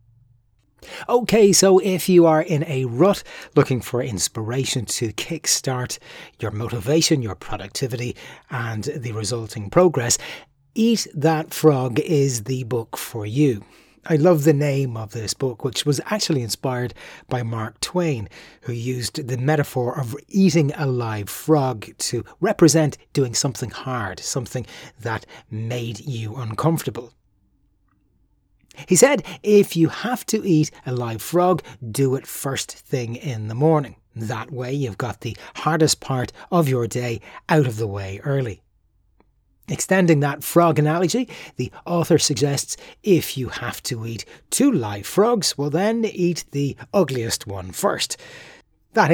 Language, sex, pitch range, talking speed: English, male, 115-160 Hz, 145 wpm